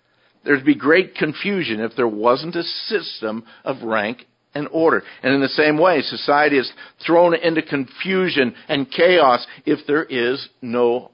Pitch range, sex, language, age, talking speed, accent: 125-160 Hz, male, English, 50-69, 160 wpm, American